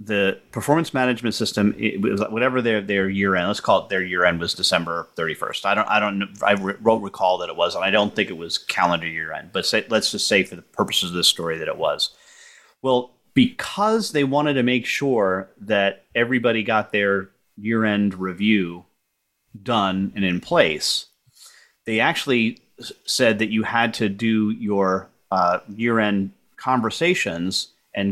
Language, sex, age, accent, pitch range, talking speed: English, male, 30-49, American, 100-130 Hz, 170 wpm